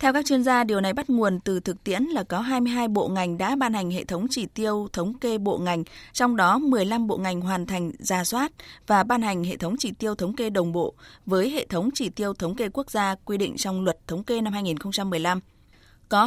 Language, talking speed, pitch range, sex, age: Vietnamese, 240 wpm, 180-240 Hz, female, 20-39